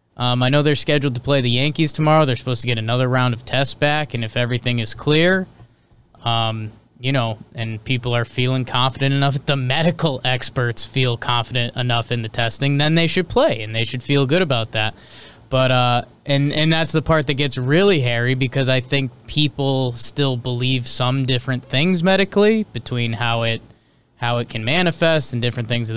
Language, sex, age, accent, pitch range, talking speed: English, male, 20-39, American, 120-155 Hz, 195 wpm